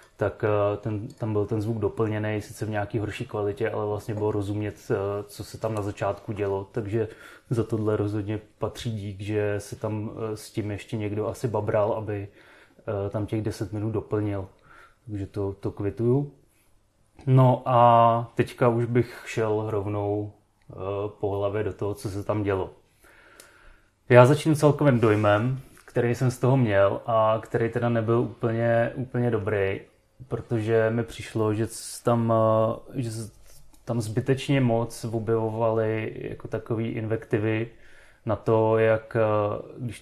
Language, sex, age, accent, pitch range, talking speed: Czech, male, 30-49, native, 105-115 Hz, 140 wpm